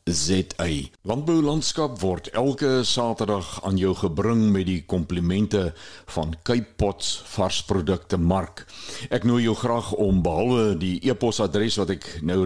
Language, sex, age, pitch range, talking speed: Swedish, male, 60-79, 95-120 Hz, 135 wpm